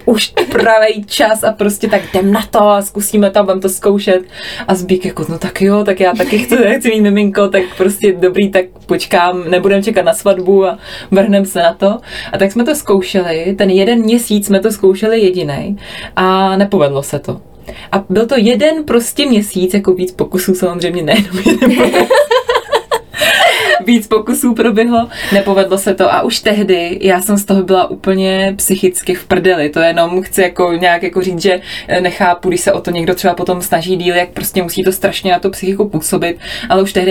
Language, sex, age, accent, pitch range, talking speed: Czech, female, 20-39, native, 185-210 Hz, 190 wpm